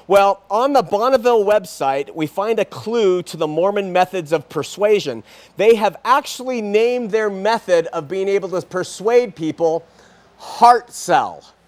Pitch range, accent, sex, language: 165-220 Hz, American, male, English